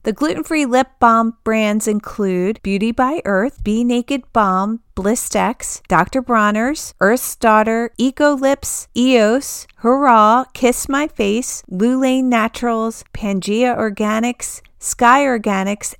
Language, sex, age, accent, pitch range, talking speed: English, female, 40-59, American, 195-255 Hz, 110 wpm